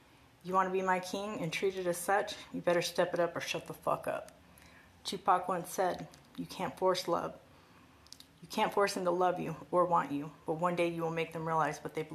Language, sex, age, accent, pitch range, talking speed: English, female, 30-49, American, 160-185 Hz, 235 wpm